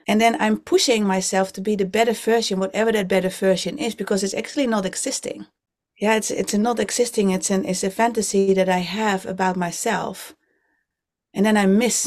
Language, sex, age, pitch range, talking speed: English, female, 30-49, 185-220 Hz, 195 wpm